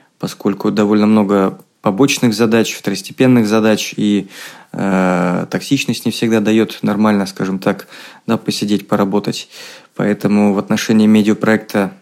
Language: Russian